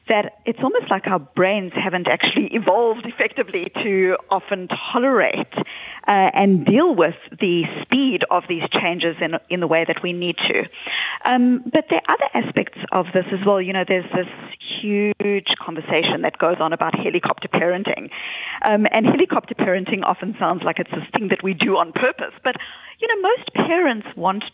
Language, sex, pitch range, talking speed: English, female, 180-230 Hz, 180 wpm